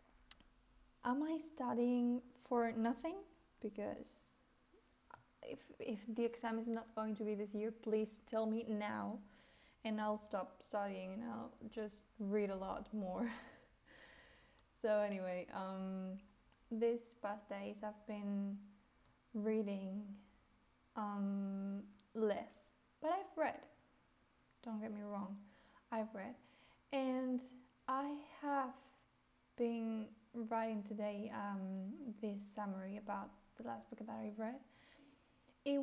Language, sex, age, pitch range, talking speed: English, female, 10-29, 205-250 Hz, 115 wpm